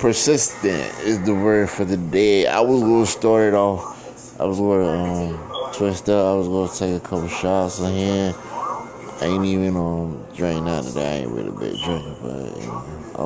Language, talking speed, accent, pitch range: English, 185 wpm, American, 80-95 Hz